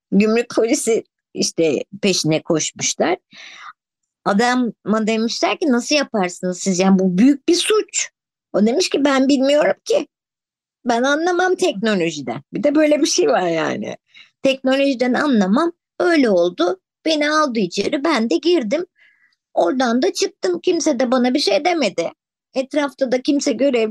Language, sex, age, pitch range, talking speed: Turkish, male, 50-69, 200-310 Hz, 140 wpm